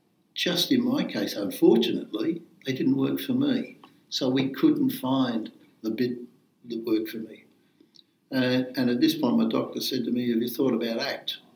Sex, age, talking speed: male, 60-79, 180 wpm